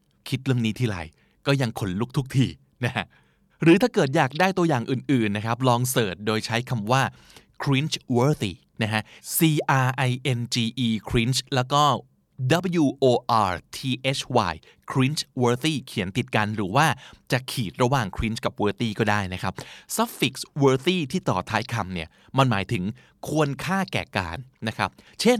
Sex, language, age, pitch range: male, Thai, 20-39, 110-155 Hz